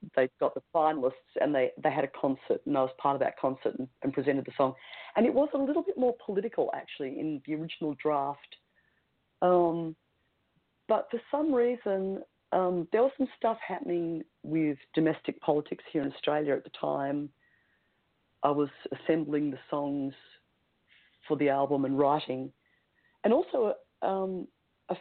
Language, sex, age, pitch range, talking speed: English, female, 40-59, 145-205 Hz, 165 wpm